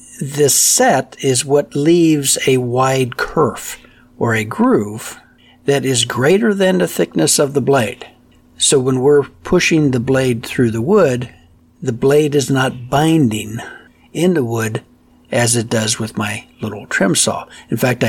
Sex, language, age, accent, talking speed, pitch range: male, English, 60-79, American, 155 wpm, 115-145 Hz